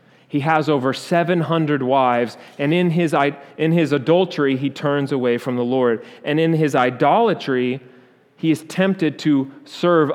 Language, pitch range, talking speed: English, 125-155 Hz, 155 wpm